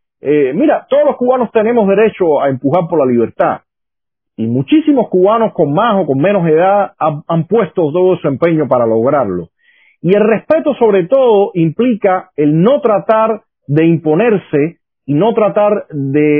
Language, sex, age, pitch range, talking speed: Spanish, male, 40-59, 140-200 Hz, 160 wpm